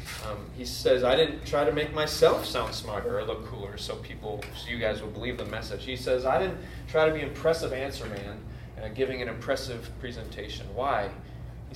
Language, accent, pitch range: English, American, 110-130 Hz